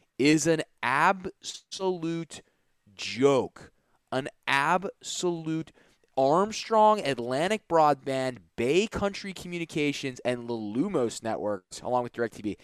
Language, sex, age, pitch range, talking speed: English, male, 20-39, 135-205 Hz, 85 wpm